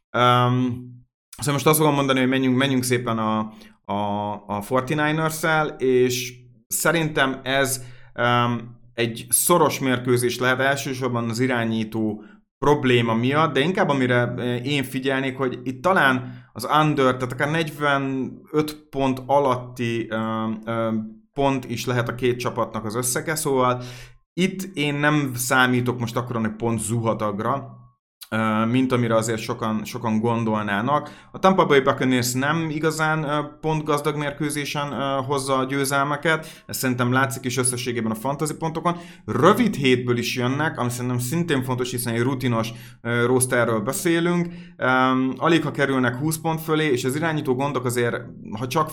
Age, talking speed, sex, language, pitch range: 30-49, 140 wpm, male, Hungarian, 120-145 Hz